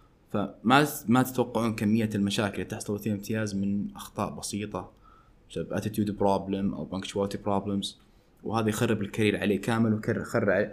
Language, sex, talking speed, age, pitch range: Arabic, male, 130 wpm, 20-39, 95-120 Hz